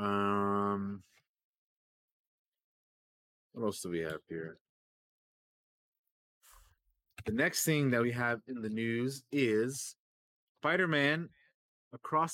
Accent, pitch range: American, 100-140 Hz